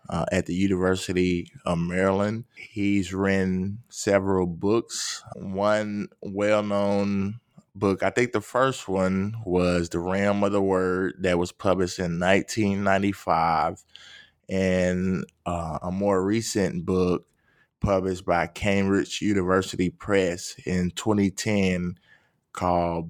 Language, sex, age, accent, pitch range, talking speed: English, male, 20-39, American, 90-105 Hz, 110 wpm